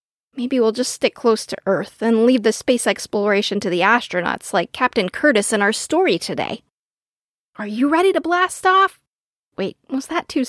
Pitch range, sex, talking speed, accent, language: 220-300 Hz, female, 185 wpm, American, English